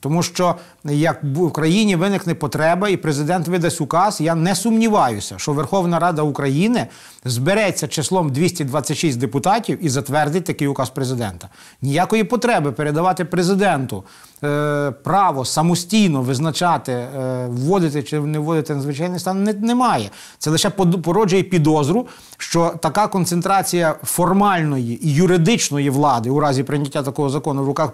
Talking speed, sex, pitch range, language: 130 wpm, male, 145-185 Hz, Ukrainian